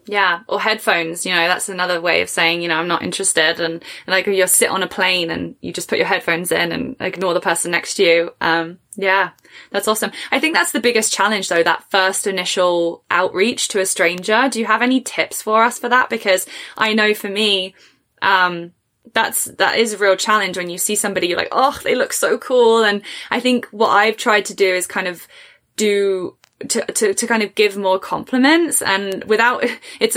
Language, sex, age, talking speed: English, female, 10-29, 220 wpm